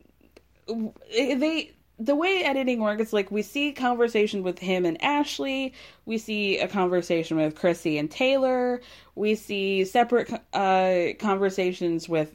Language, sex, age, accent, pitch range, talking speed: English, female, 20-39, American, 175-260 Hz, 130 wpm